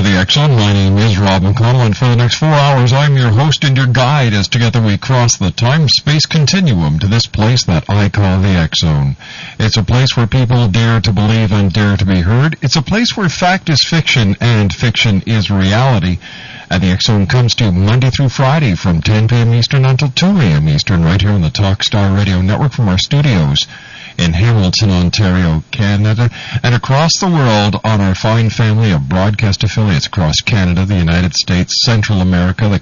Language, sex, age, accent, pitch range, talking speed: English, male, 50-69, American, 100-130 Hz, 200 wpm